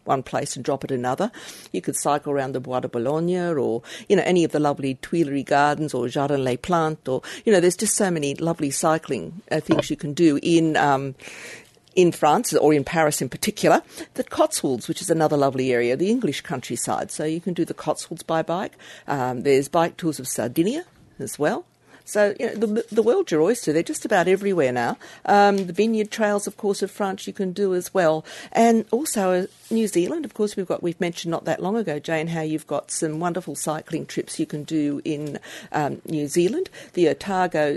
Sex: female